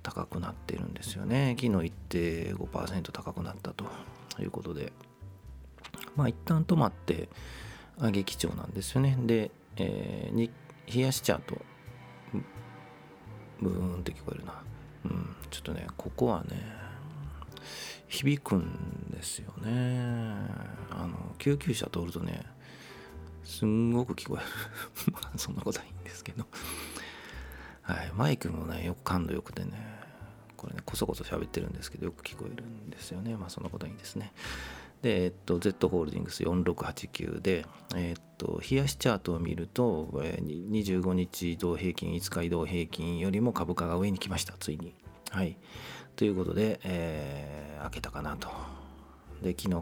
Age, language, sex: 40-59, Japanese, male